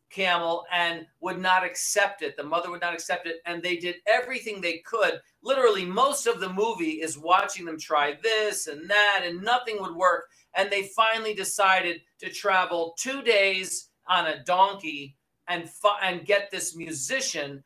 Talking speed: 170 wpm